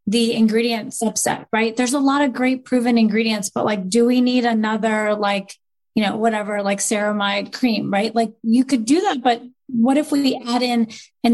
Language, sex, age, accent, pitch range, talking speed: English, female, 20-39, American, 215-250 Hz, 195 wpm